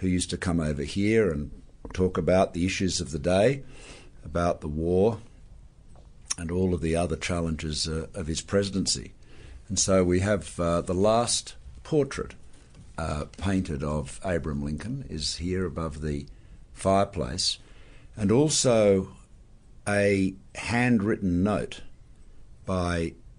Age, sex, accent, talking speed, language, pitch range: 50-69, male, Australian, 130 wpm, English, 75-95 Hz